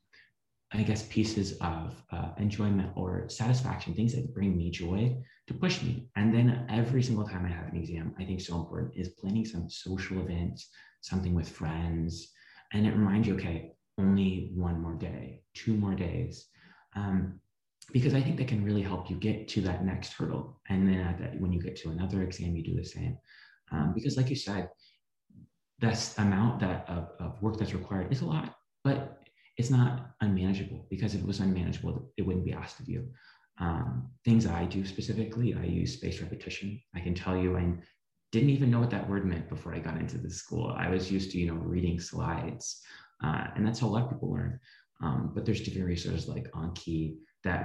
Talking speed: 200 wpm